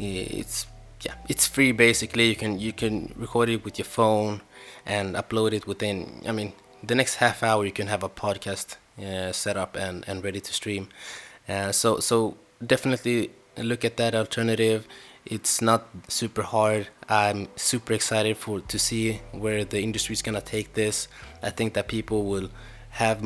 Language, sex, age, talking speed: English, male, 20-39, 175 wpm